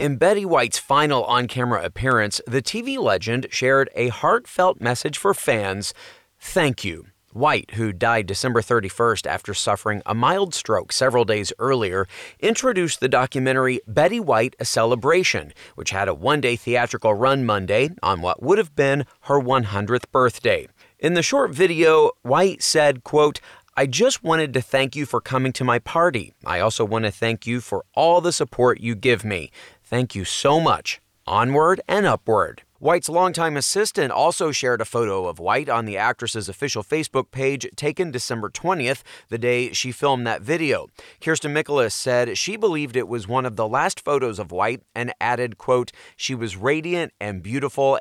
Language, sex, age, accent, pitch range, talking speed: English, male, 30-49, American, 115-150 Hz, 170 wpm